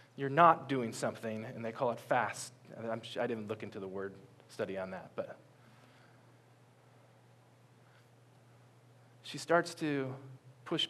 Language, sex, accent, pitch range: English, male, American, 120-160 Hz